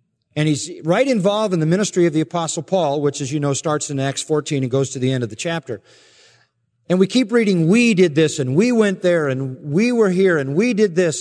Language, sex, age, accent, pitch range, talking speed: English, male, 40-59, American, 145-200 Hz, 245 wpm